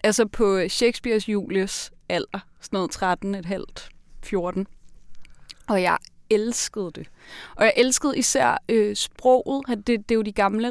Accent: native